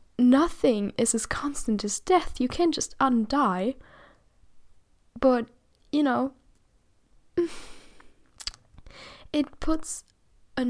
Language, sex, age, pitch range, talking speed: English, female, 10-29, 220-285 Hz, 90 wpm